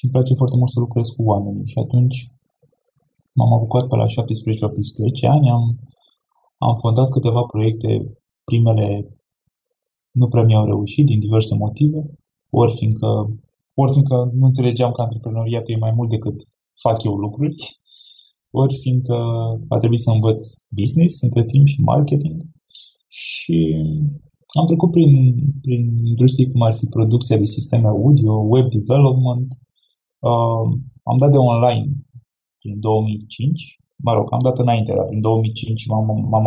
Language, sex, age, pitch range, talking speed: Romanian, male, 20-39, 110-130 Hz, 145 wpm